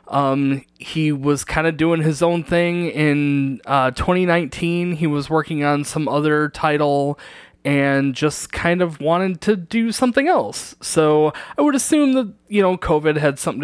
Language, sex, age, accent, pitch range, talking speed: English, male, 20-39, American, 140-180 Hz, 165 wpm